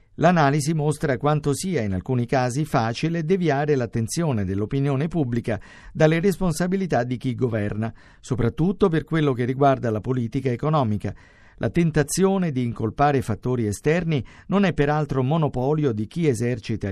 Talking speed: 135 wpm